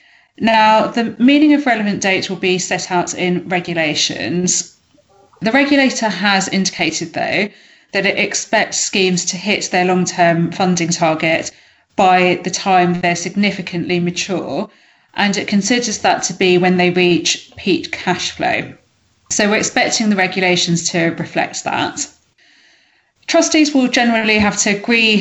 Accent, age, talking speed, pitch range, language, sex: British, 30-49, 140 wpm, 180-220 Hz, English, female